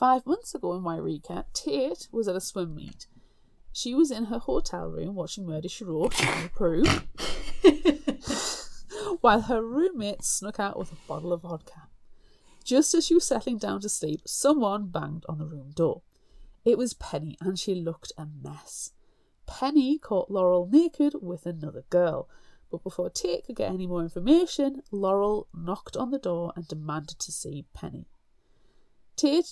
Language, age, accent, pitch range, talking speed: English, 30-49, British, 165-235 Hz, 160 wpm